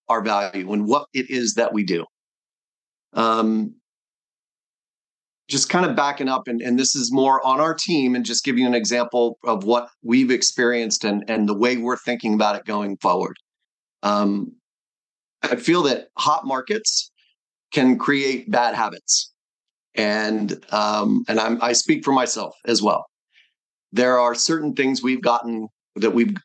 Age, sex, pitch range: 30-49, male, 110-135 Hz